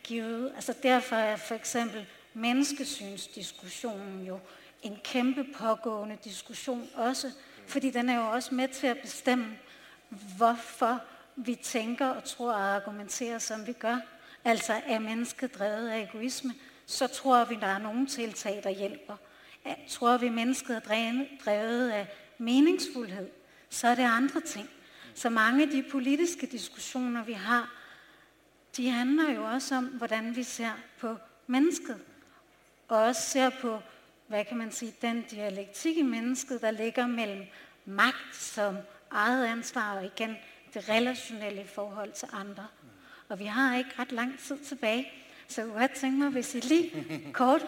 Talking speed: 150 wpm